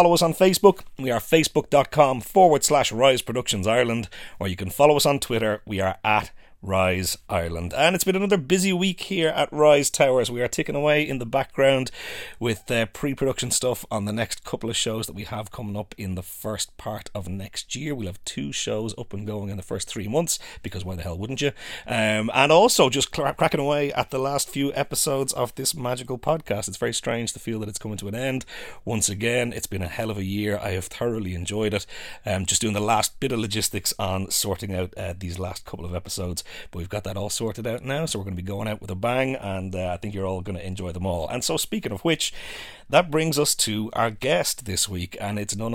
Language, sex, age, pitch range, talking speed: English, male, 30-49, 100-130 Hz, 240 wpm